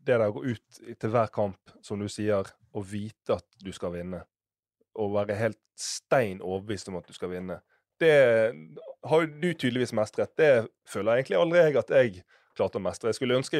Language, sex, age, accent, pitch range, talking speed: English, male, 30-49, Swedish, 105-145 Hz, 170 wpm